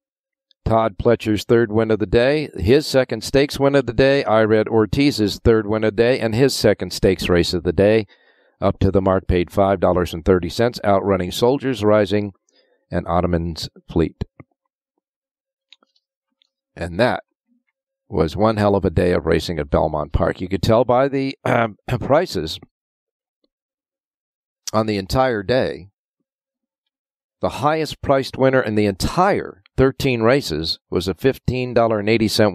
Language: English